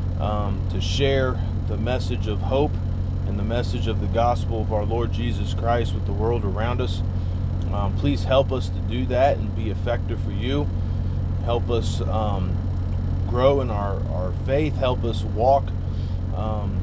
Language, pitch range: English, 90-105 Hz